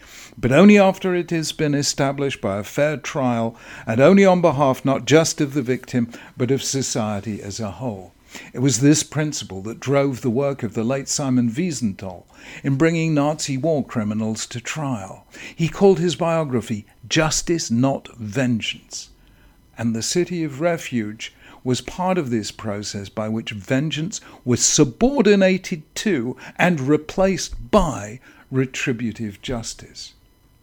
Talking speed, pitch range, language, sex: 145 wpm, 115-150 Hz, English, male